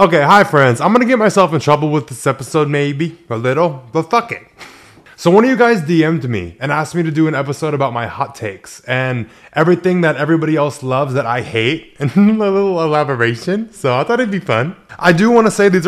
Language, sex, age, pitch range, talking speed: English, male, 20-39, 135-185 Hz, 235 wpm